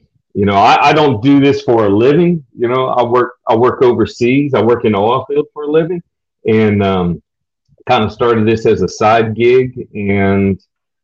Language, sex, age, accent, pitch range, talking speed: English, male, 40-59, American, 105-130 Hz, 200 wpm